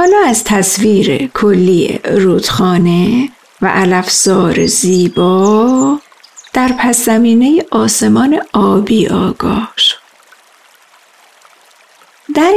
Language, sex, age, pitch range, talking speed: Persian, female, 50-69, 195-265 Hz, 70 wpm